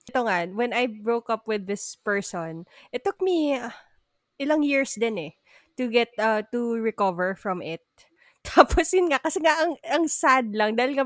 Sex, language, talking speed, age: female, Filipino, 185 wpm, 20-39